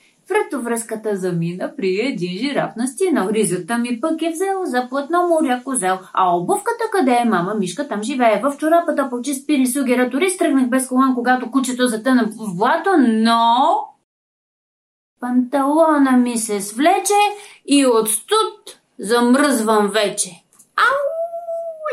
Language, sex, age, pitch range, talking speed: Bulgarian, female, 30-49, 220-315 Hz, 135 wpm